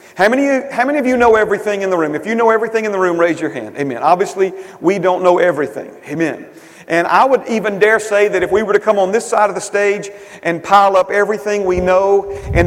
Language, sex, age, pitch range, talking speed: English, male, 40-59, 195-230 Hz, 245 wpm